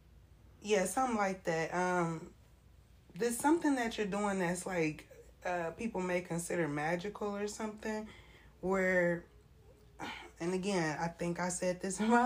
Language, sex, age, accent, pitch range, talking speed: English, female, 20-39, American, 160-190 Hz, 140 wpm